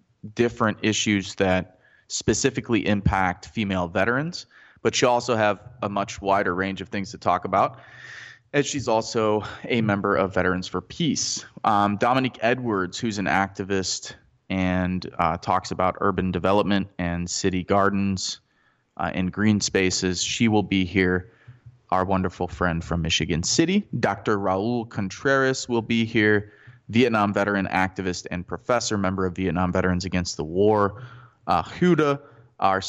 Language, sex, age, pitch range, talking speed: English, male, 20-39, 95-115 Hz, 145 wpm